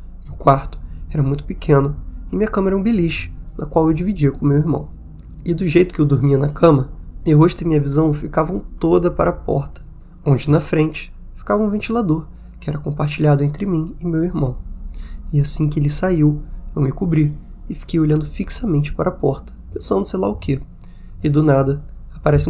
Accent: Brazilian